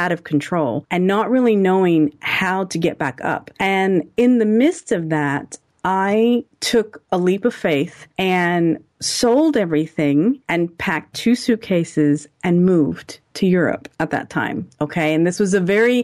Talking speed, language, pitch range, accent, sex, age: 165 wpm, English, 165-210 Hz, American, female, 40-59